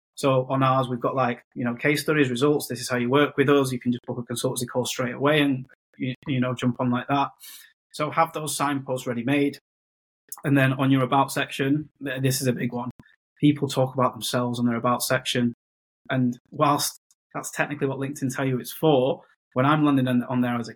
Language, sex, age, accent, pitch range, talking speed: English, male, 20-39, British, 125-140 Hz, 220 wpm